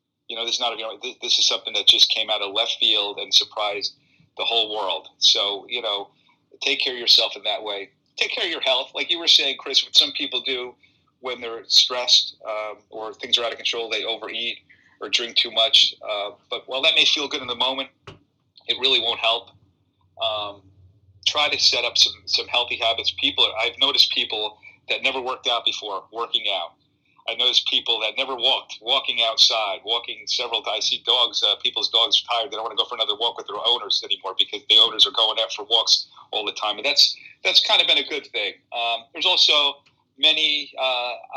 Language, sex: English, male